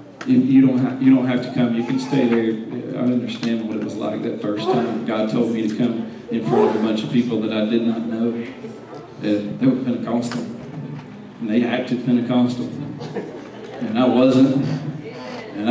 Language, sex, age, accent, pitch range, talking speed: English, male, 40-59, American, 115-135 Hz, 180 wpm